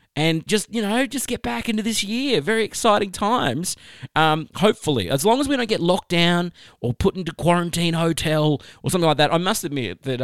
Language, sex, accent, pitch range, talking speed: English, male, Australian, 120-160 Hz, 210 wpm